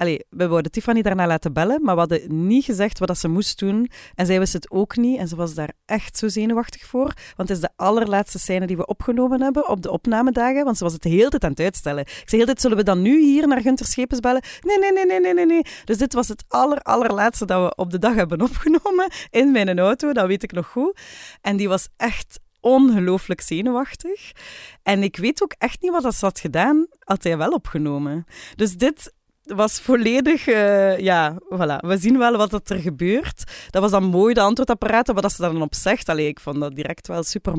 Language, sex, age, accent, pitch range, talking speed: Dutch, female, 30-49, Dutch, 185-255 Hz, 225 wpm